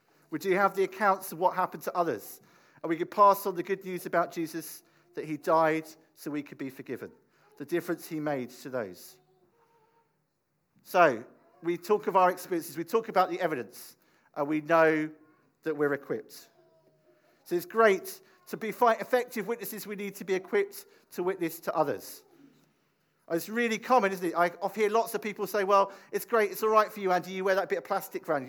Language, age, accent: English, 50-69, British